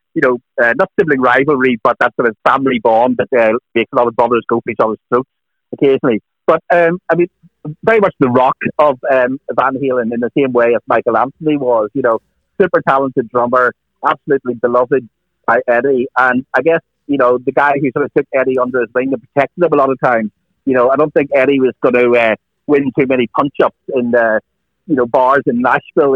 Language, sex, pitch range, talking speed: English, male, 125-145 Hz, 225 wpm